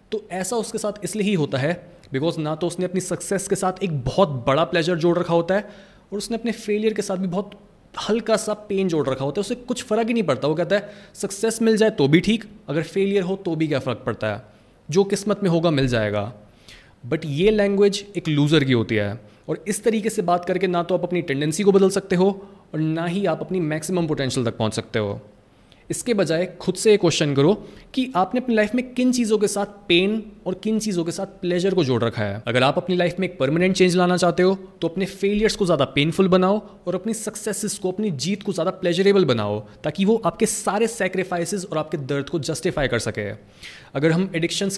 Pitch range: 150-200 Hz